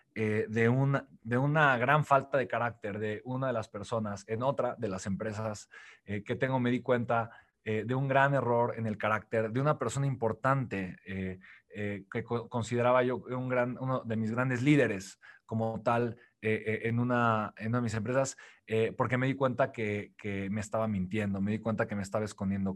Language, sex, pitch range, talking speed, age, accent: Spanish, male, 110-135 Hz, 205 wpm, 20-39, Mexican